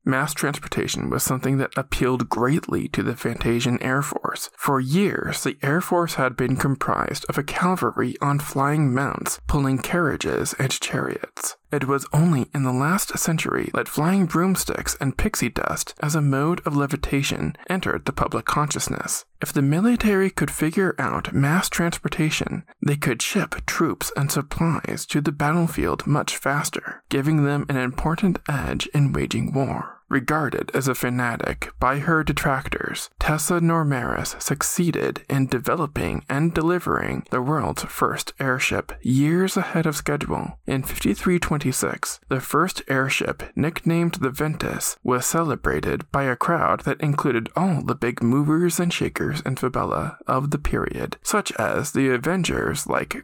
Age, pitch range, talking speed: 20-39, 130-165 Hz, 150 wpm